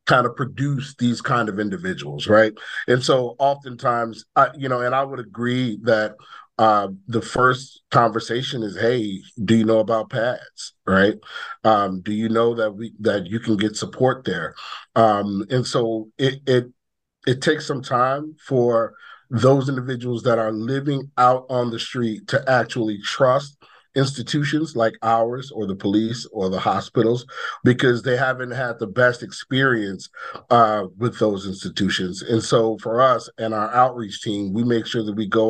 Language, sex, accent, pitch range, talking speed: English, male, American, 105-125 Hz, 165 wpm